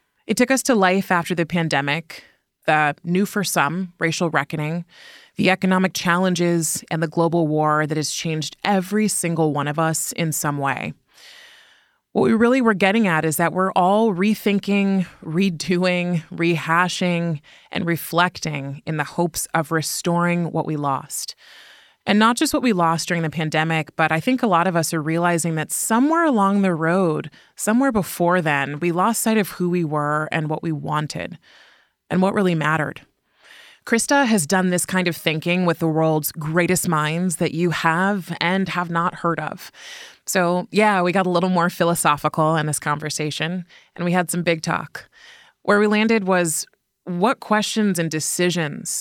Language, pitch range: English, 160-195 Hz